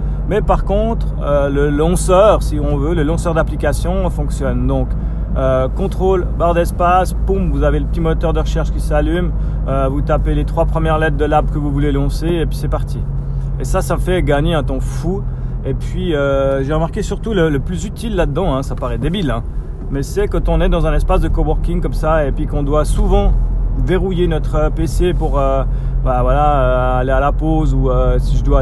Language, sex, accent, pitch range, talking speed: French, male, French, 130-160 Hz, 215 wpm